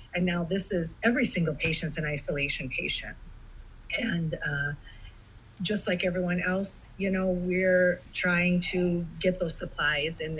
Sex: female